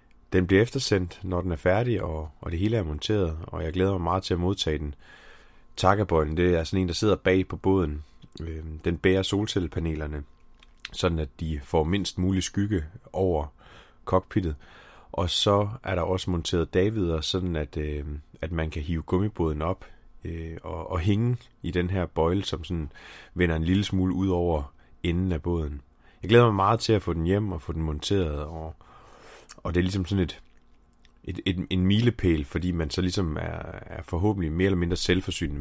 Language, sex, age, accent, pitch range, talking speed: Danish, male, 30-49, native, 80-95 Hz, 185 wpm